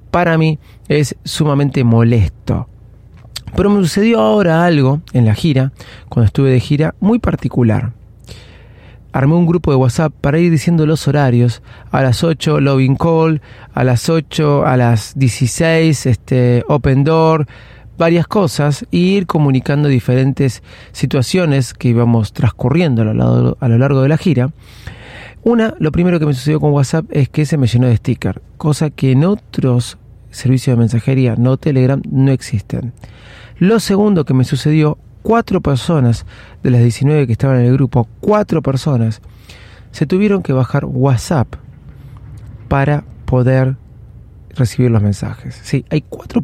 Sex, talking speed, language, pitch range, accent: male, 150 wpm, Spanish, 115-150 Hz, Argentinian